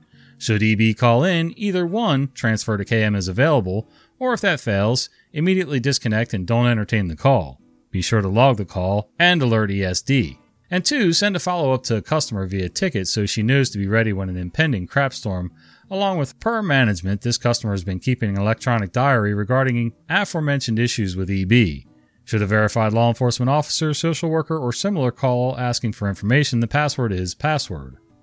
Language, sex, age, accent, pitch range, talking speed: English, male, 30-49, American, 100-145 Hz, 185 wpm